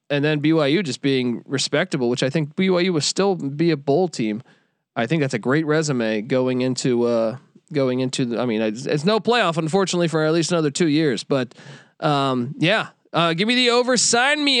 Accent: American